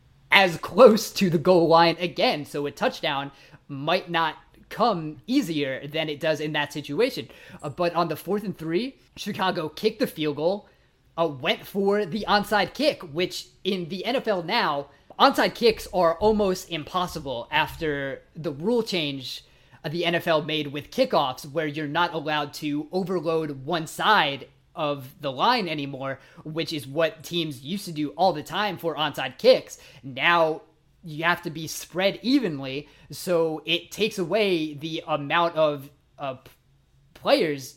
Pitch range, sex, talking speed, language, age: 150-190 Hz, male, 155 wpm, English, 20-39